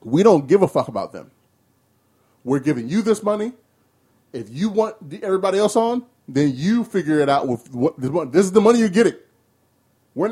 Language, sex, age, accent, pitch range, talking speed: English, male, 20-39, American, 130-205 Hz, 190 wpm